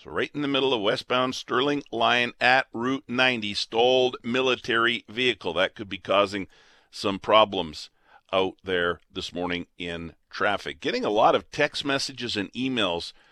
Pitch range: 115-145 Hz